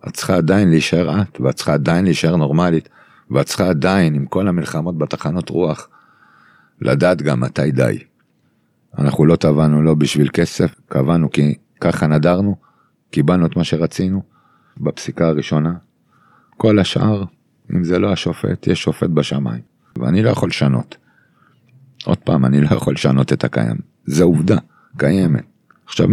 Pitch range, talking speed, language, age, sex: 75-105 Hz, 150 wpm, Hebrew, 50-69, male